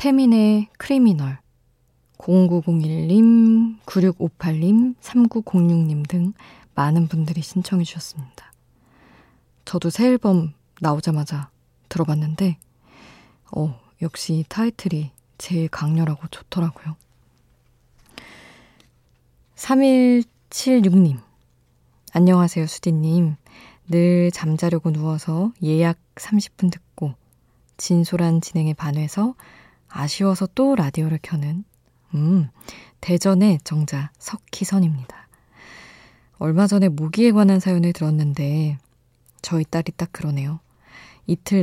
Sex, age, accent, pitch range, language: female, 20-39, native, 150-190 Hz, Korean